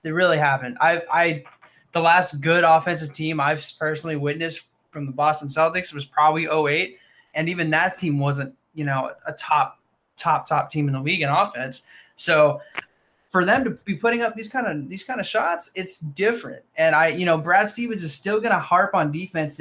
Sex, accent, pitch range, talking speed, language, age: male, American, 150-185 Hz, 200 wpm, English, 20-39